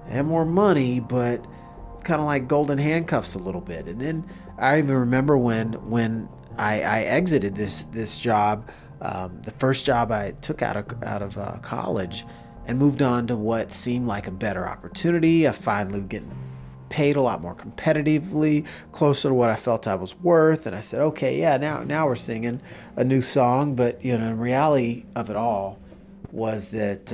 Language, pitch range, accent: English, 105-145 Hz, American